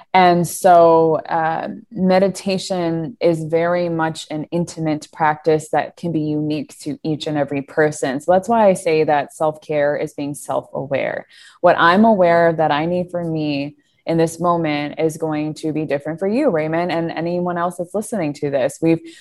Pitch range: 155-180 Hz